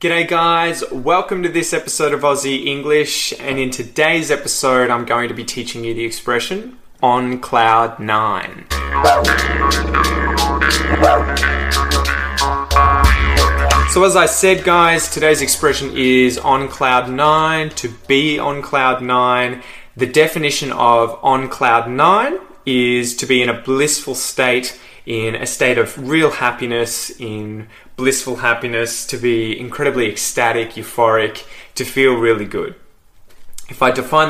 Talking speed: 130 wpm